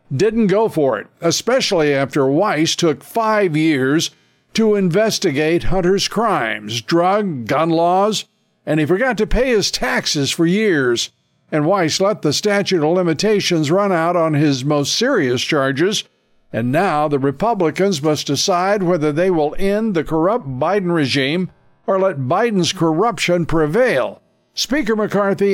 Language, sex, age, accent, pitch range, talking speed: English, male, 60-79, American, 150-195 Hz, 145 wpm